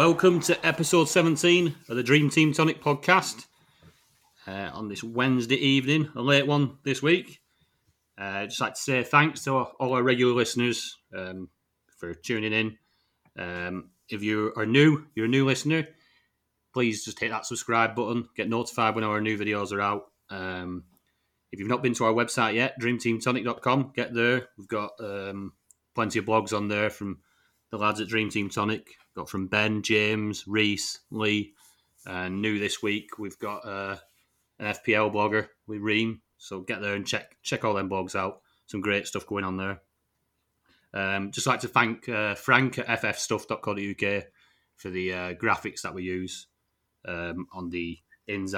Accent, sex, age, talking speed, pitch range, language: British, male, 30-49, 175 wpm, 100-125 Hz, English